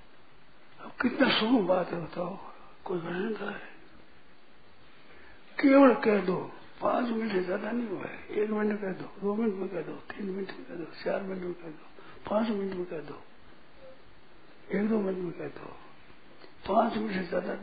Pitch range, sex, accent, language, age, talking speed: 190-225 Hz, male, native, Hindi, 60-79, 175 wpm